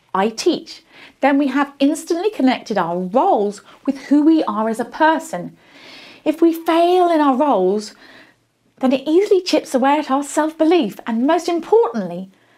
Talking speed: 155 wpm